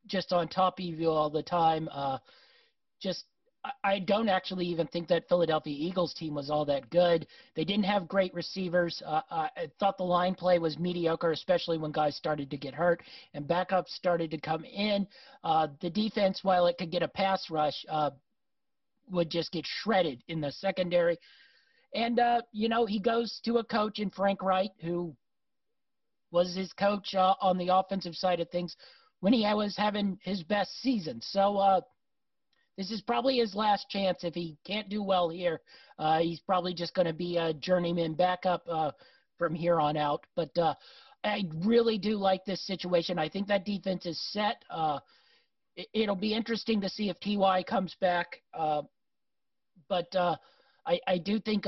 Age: 40-59